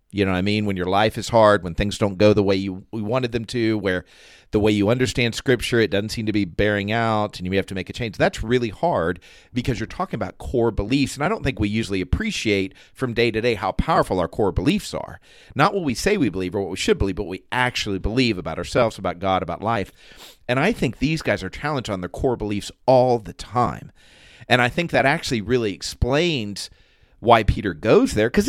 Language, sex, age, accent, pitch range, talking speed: English, male, 40-59, American, 100-130 Hz, 240 wpm